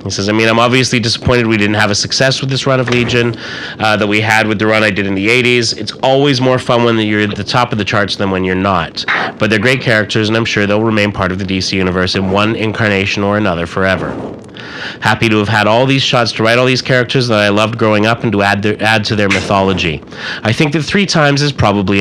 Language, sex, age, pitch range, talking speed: English, male, 30-49, 95-115 Hz, 260 wpm